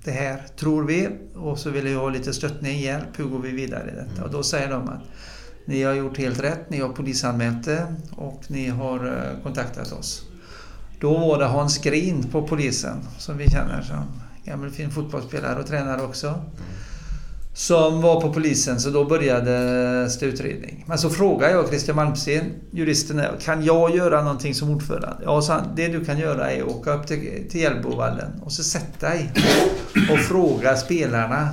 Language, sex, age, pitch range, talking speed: Swedish, male, 50-69, 125-155 Hz, 180 wpm